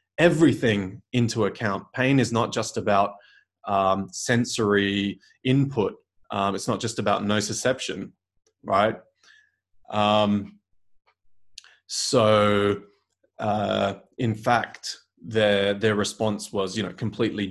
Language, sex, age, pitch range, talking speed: English, male, 20-39, 100-115 Hz, 105 wpm